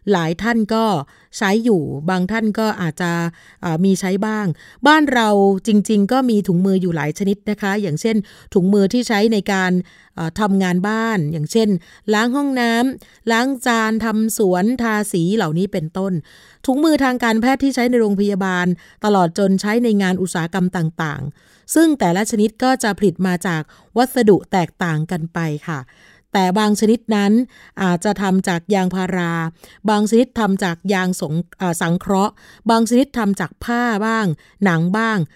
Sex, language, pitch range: female, Thai, 185-230 Hz